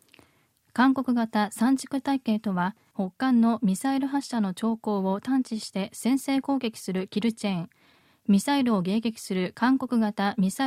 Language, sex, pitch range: Japanese, female, 200-250 Hz